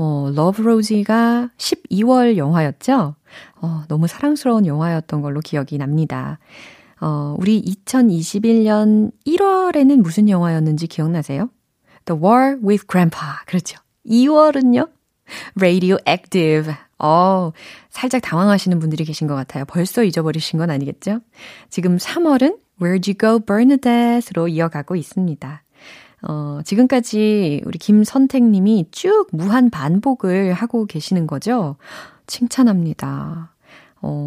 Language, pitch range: Korean, 160-235 Hz